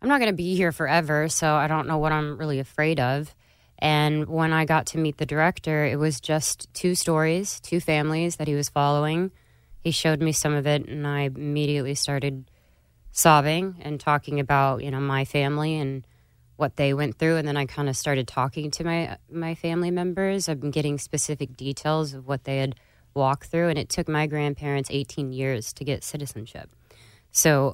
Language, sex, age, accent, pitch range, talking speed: English, female, 20-39, American, 130-160 Hz, 200 wpm